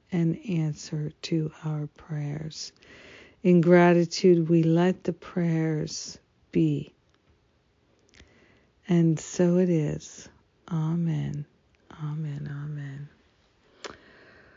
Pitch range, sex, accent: 160-190 Hz, female, American